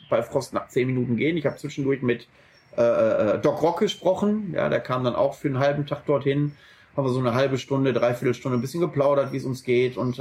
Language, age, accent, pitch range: German, 30-49, German, 125-155 Hz